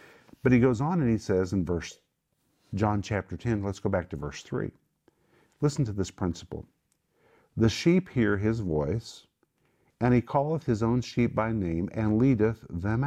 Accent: American